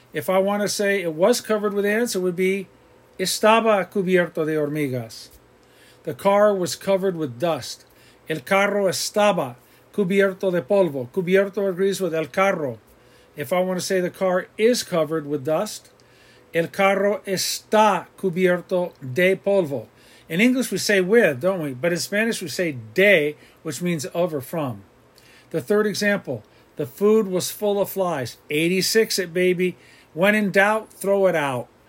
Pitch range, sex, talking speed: 160-200 Hz, male, 160 wpm